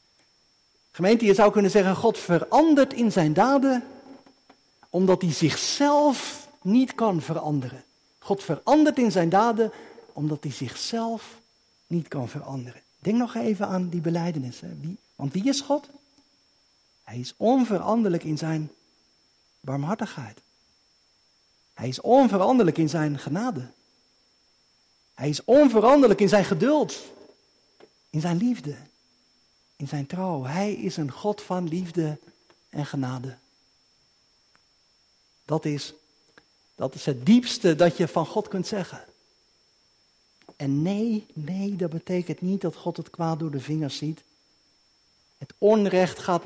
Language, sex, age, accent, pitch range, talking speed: Dutch, male, 50-69, Dutch, 155-215 Hz, 125 wpm